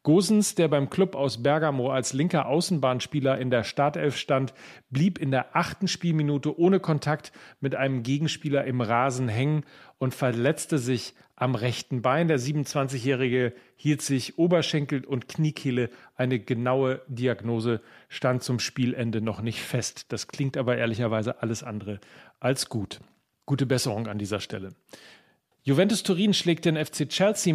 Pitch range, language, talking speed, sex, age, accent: 130-165 Hz, German, 145 wpm, male, 40-59, German